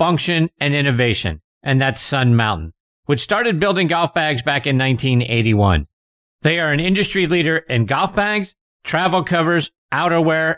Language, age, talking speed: English, 50-69, 145 wpm